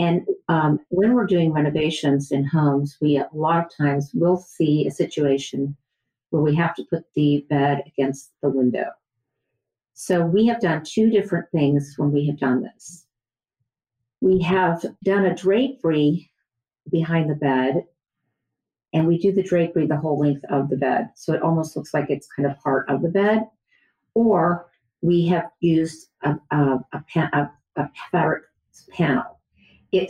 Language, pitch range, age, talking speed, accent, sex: English, 140-170 Hz, 50-69, 165 wpm, American, female